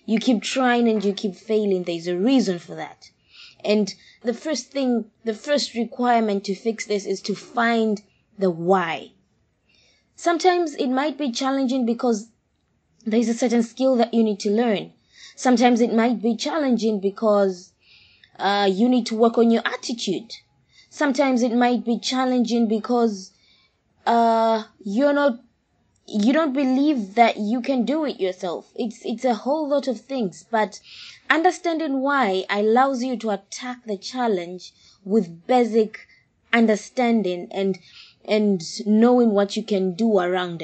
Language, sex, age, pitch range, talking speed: English, female, 20-39, 205-255 Hz, 150 wpm